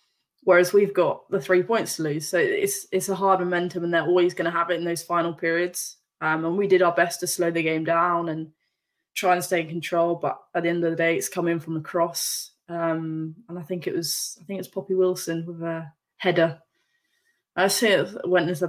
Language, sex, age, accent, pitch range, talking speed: English, female, 20-39, British, 160-180 Hz, 240 wpm